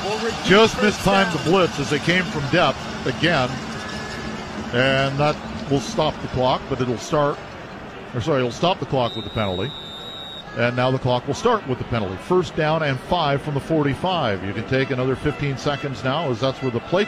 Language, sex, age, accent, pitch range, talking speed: English, male, 50-69, American, 130-170 Hz, 200 wpm